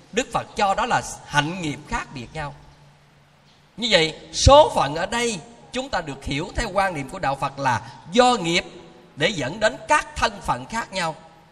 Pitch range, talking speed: 160-230 Hz, 195 wpm